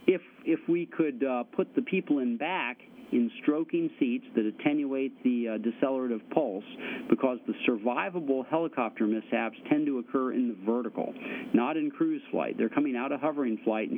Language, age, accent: English, 50-69, American